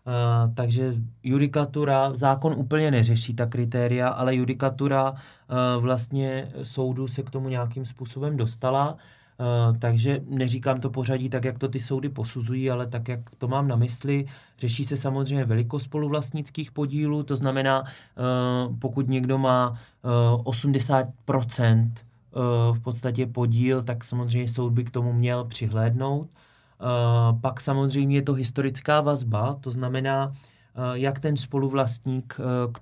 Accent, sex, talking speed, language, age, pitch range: native, male, 135 wpm, Czech, 20-39, 120-135 Hz